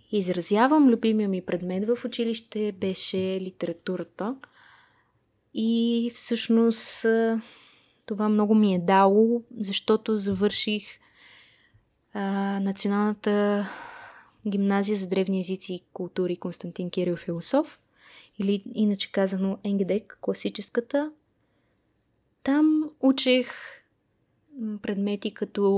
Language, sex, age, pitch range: Bulgarian, female, 20-39, 195-235 Hz